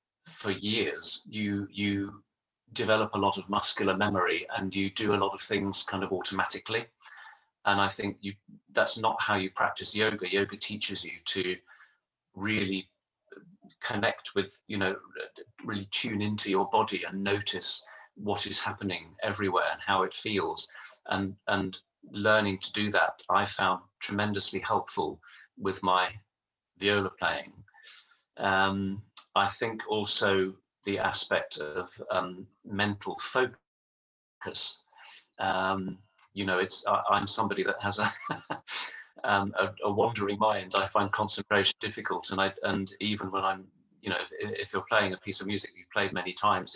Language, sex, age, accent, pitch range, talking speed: Italian, male, 40-59, British, 95-105 Hz, 150 wpm